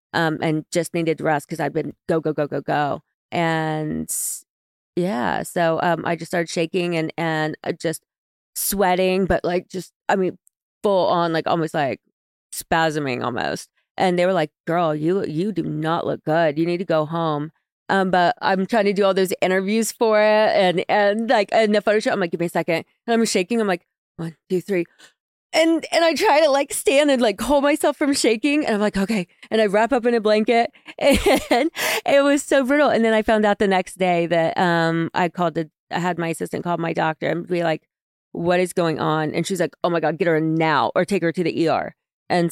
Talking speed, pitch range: 225 wpm, 160-205 Hz